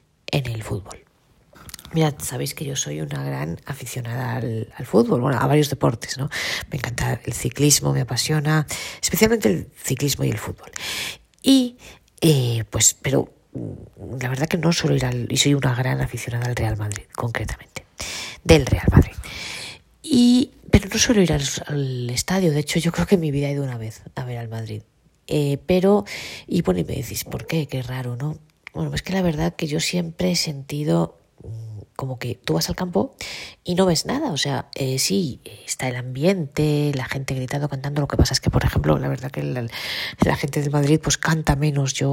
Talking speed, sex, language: 200 wpm, female, Spanish